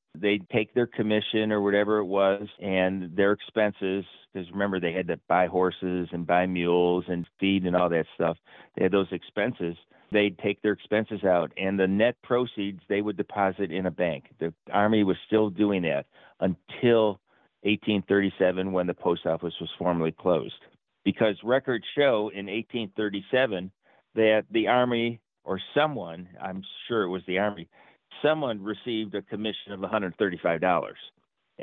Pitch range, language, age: 90-115 Hz, English, 50-69